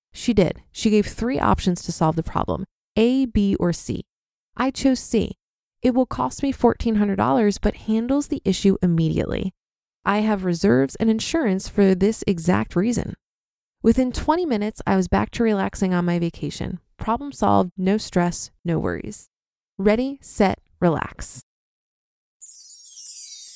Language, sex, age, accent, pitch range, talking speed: English, female, 20-39, American, 185-250 Hz, 145 wpm